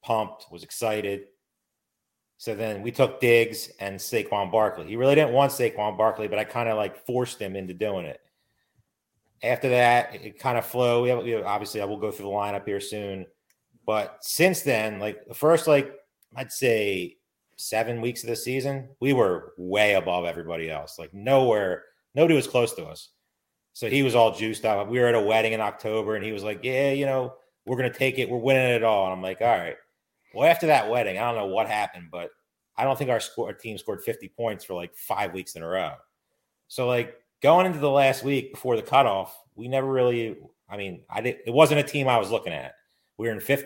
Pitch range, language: 105-130 Hz, English